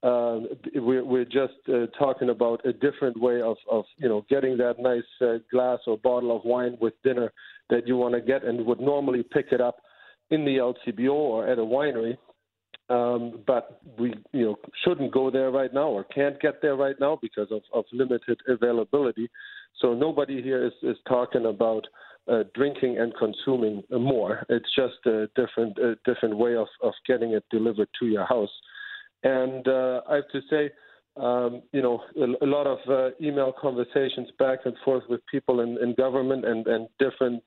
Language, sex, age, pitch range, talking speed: English, male, 50-69, 120-135 Hz, 185 wpm